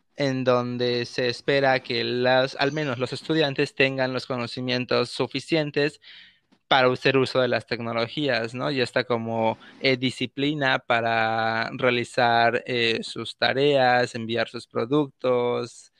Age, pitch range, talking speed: 20-39, 120-140 Hz, 130 wpm